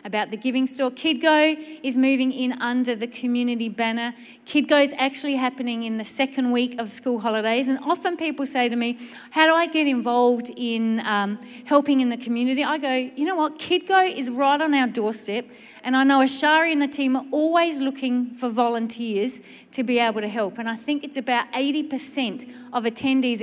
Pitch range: 225-265 Hz